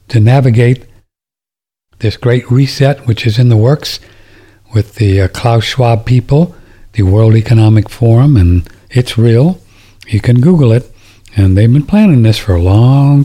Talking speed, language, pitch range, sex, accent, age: 160 wpm, English, 105-120 Hz, male, American, 60-79